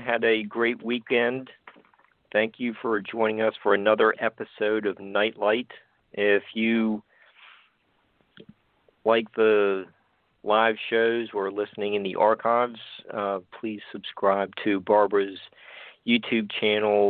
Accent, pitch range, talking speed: American, 100-110 Hz, 110 wpm